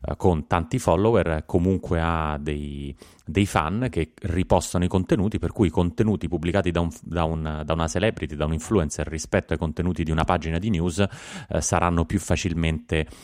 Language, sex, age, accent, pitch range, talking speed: Italian, male, 30-49, native, 80-100 Hz, 165 wpm